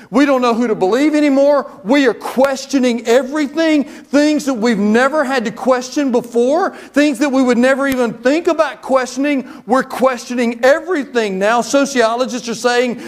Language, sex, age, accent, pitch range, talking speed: English, male, 40-59, American, 185-255 Hz, 160 wpm